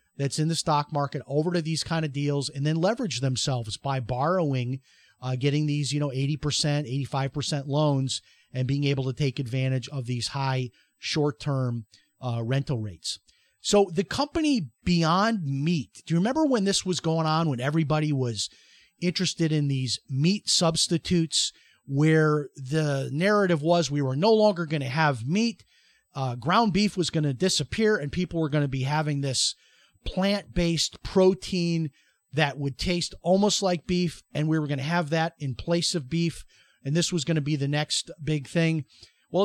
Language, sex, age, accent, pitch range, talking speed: English, male, 30-49, American, 140-185 Hz, 180 wpm